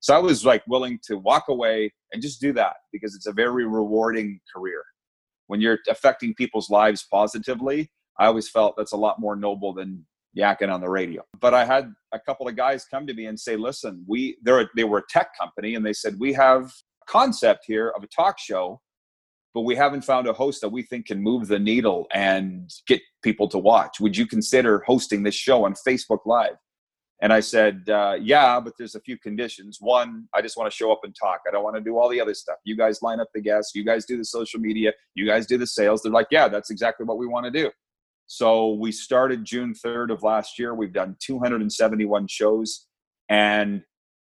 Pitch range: 105-120 Hz